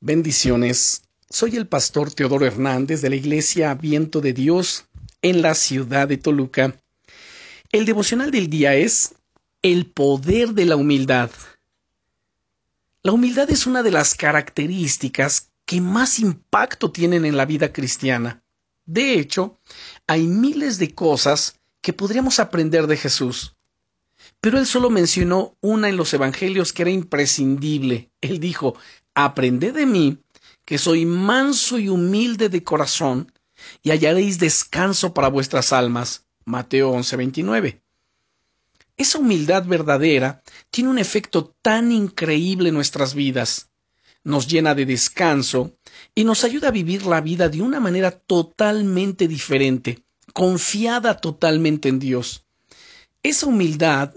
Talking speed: 130 wpm